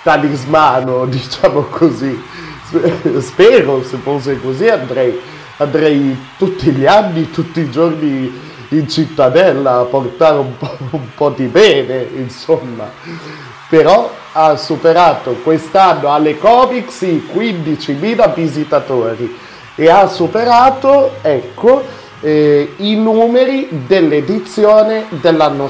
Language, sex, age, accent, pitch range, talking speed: Italian, male, 30-49, native, 125-165 Hz, 100 wpm